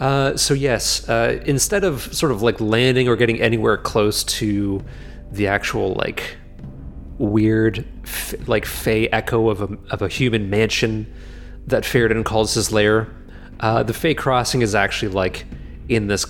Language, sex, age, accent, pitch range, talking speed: English, male, 30-49, American, 95-125 Hz, 160 wpm